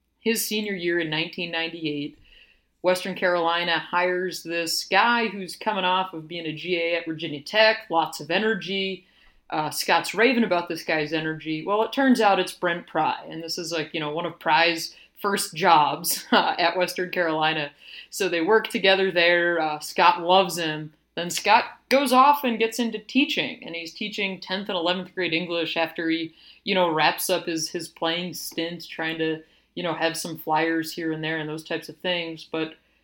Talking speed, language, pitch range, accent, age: 185 wpm, English, 165-195 Hz, American, 30-49